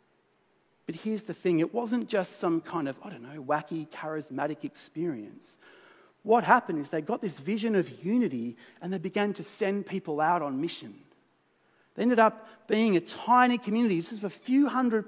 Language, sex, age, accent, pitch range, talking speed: English, male, 40-59, Australian, 145-205 Hz, 180 wpm